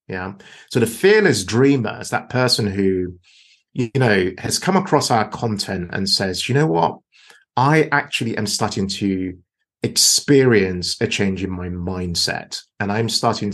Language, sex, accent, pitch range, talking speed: English, male, British, 100-145 Hz, 155 wpm